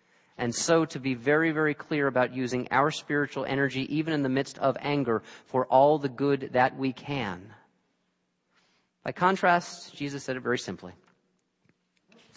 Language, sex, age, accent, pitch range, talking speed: English, male, 40-59, American, 110-140 Hz, 160 wpm